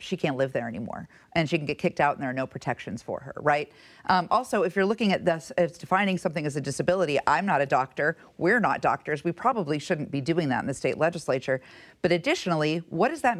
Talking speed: 240 wpm